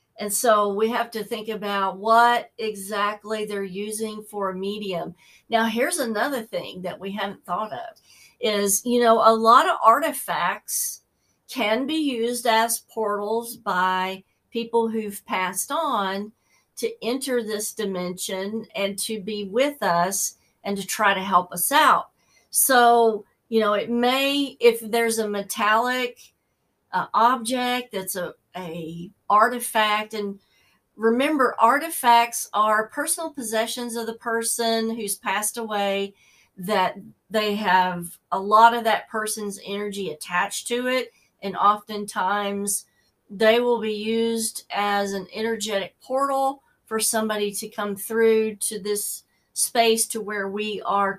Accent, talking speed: American, 135 wpm